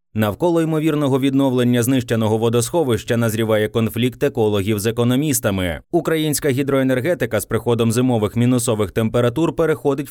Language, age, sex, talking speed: Ukrainian, 20-39, male, 105 wpm